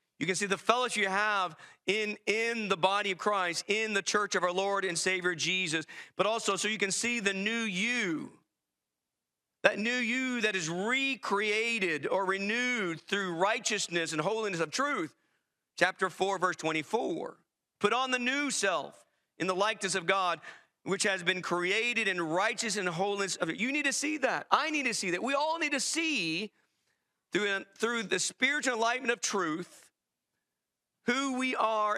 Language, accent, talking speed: English, American, 175 wpm